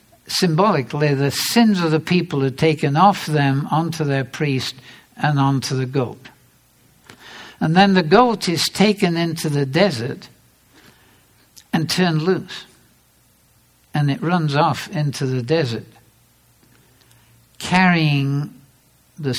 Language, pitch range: English, 125-160 Hz